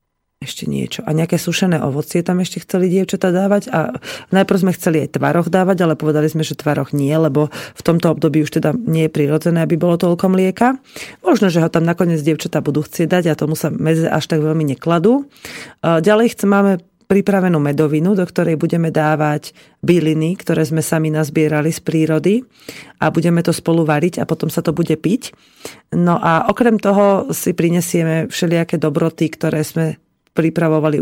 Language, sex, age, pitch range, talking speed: Slovak, female, 30-49, 155-175 Hz, 180 wpm